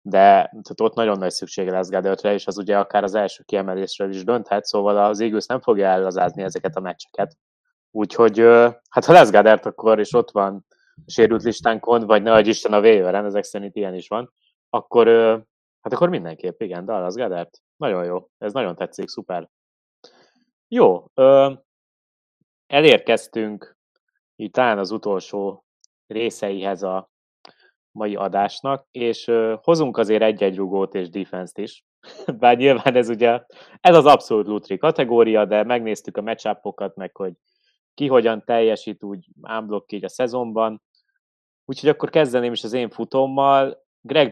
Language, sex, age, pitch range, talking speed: Hungarian, male, 20-39, 100-120 Hz, 150 wpm